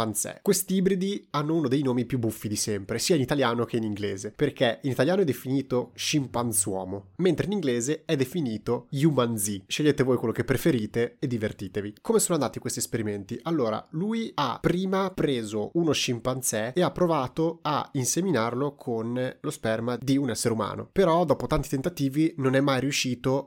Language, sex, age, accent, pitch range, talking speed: Italian, male, 30-49, native, 115-140 Hz, 170 wpm